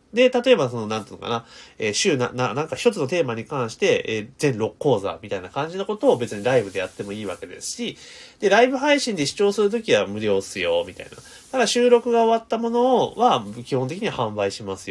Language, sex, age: Japanese, male, 30-49